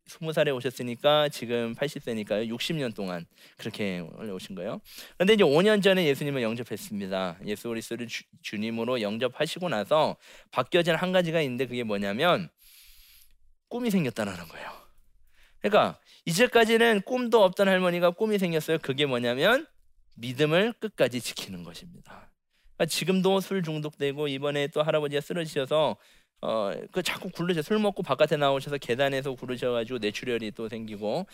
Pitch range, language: 120-175 Hz, Korean